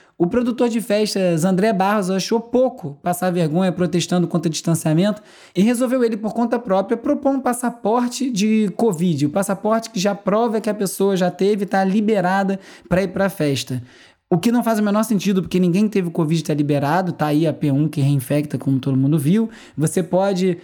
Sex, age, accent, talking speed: male, 20-39, Brazilian, 205 wpm